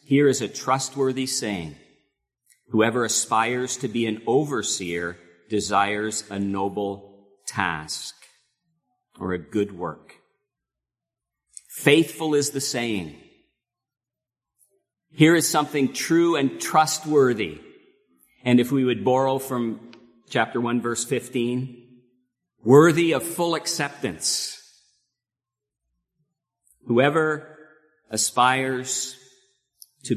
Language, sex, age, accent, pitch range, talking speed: English, male, 50-69, American, 100-135 Hz, 90 wpm